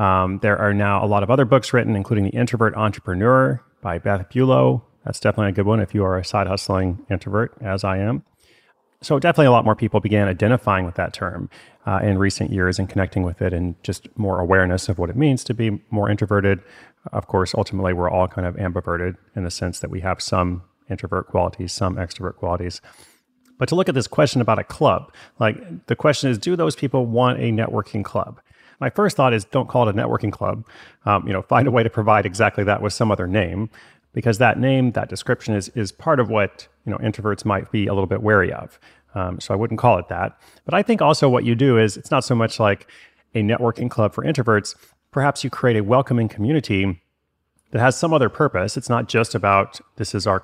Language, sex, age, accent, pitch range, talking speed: English, male, 30-49, American, 95-120 Hz, 225 wpm